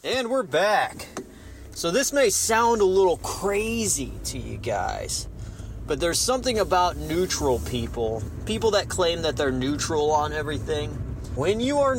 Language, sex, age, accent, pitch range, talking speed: English, male, 30-49, American, 110-165 Hz, 150 wpm